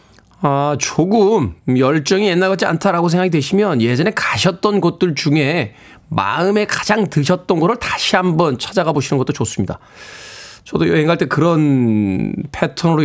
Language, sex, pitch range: Korean, male, 130-185 Hz